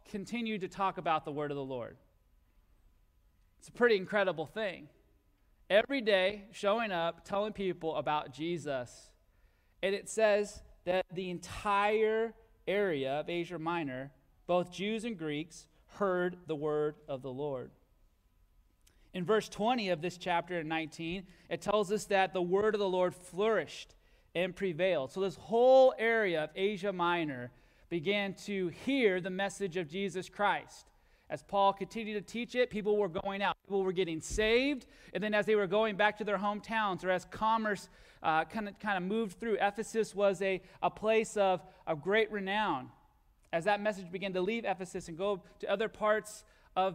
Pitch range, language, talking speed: 160-205 Hz, English, 165 wpm